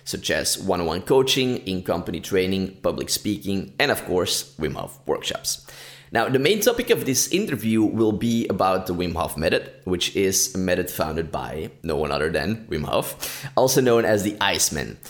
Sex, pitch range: male, 95-120 Hz